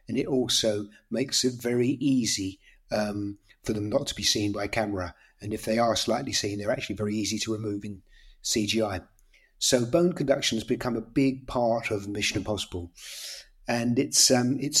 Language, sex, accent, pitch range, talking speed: English, male, British, 110-135 Hz, 180 wpm